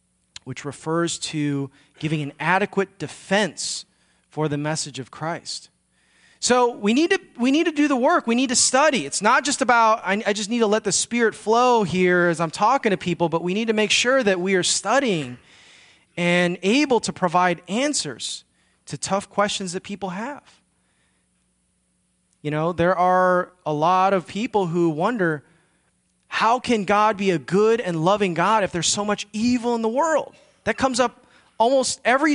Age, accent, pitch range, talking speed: 30-49, American, 170-230 Hz, 180 wpm